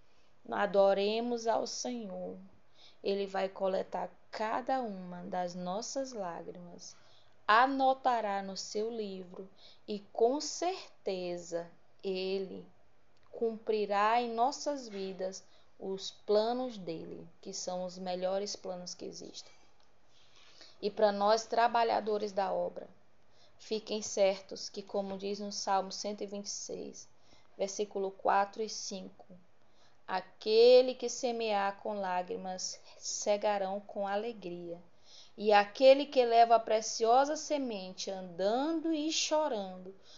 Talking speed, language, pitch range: 105 wpm, Portuguese, 185-230 Hz